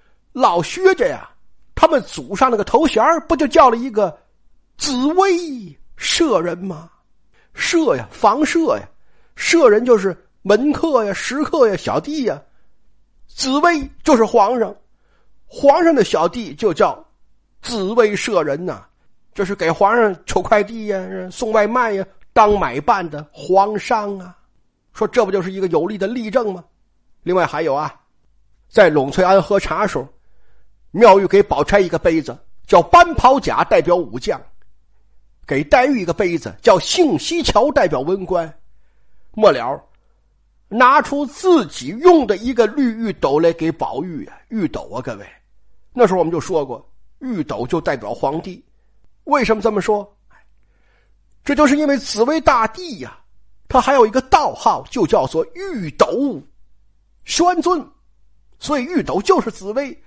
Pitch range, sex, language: 190-295 Hz, male, Chinese